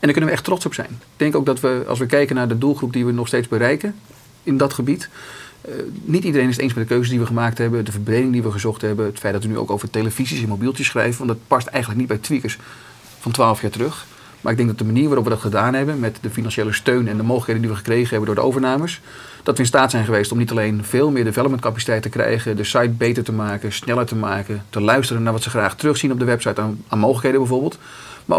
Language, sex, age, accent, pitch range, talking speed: Dutch, male, 40-59, Dutch, 110-130 Hz, 275 wpm